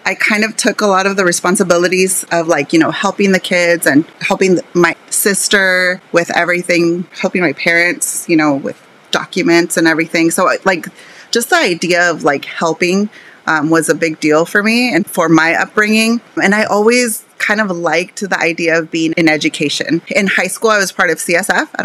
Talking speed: 195 wpm